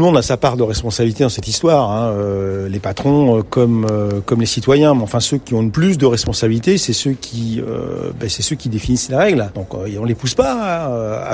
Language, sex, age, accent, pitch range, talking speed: French, male, 50-69, French, 115-145 Hz, 260 wpm